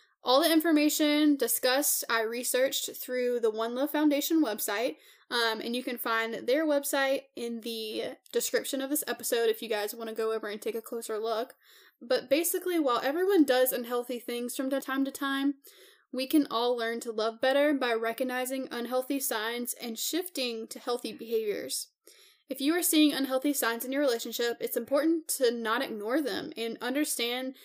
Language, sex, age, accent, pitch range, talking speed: English, female, 10-29, American, 235-315 Hz, 175 wpm